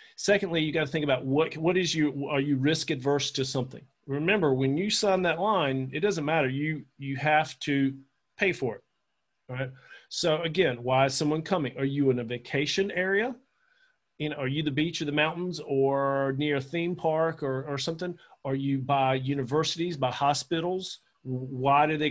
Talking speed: 195 wpm